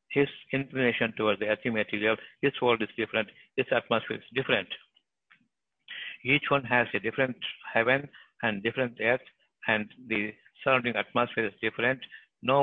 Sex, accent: male, native